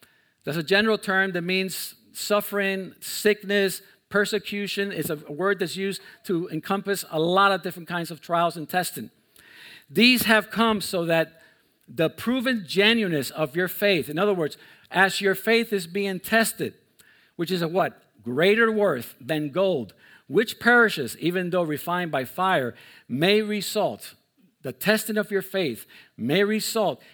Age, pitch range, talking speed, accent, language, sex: 50-69, 160-205 Hz, 155 wpm, American, English, male